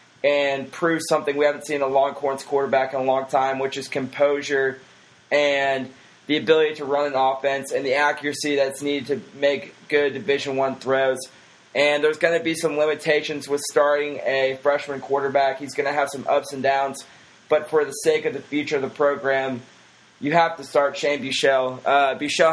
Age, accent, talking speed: 20-39, American, 190 wpm